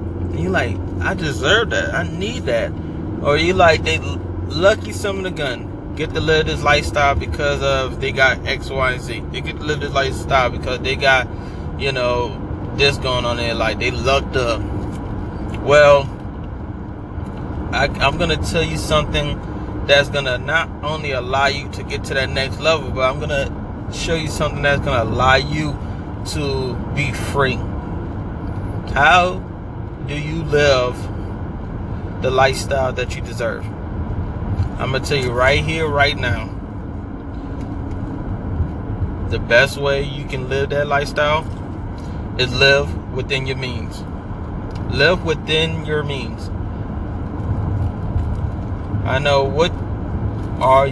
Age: 20-39